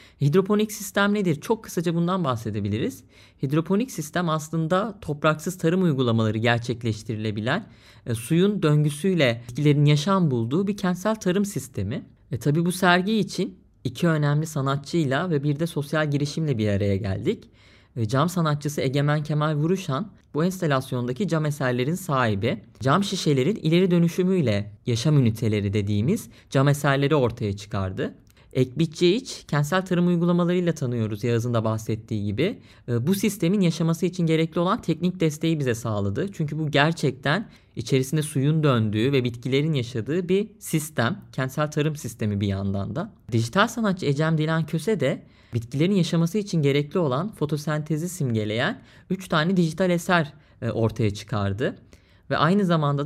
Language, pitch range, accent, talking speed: Turkish, 120-175 Hz, native, 135 wpm